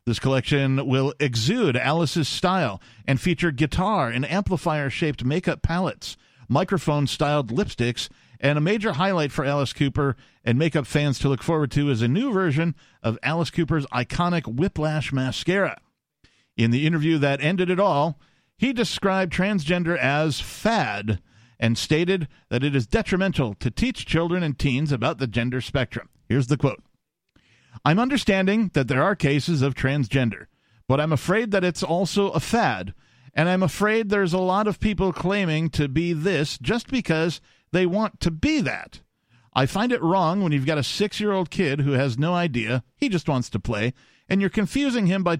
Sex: male